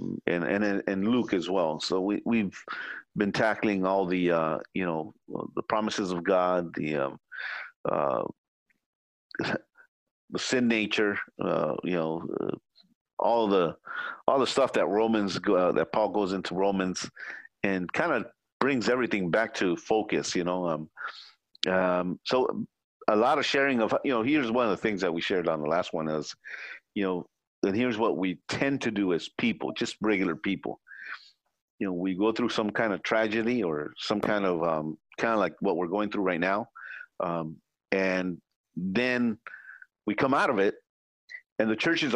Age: 50-69